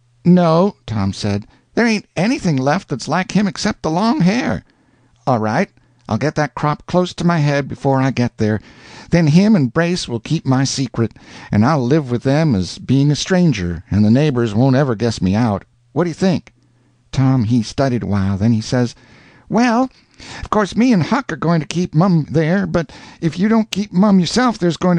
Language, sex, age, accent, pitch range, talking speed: English, male, 60-79, American, 120-180 Hz, 205 wpm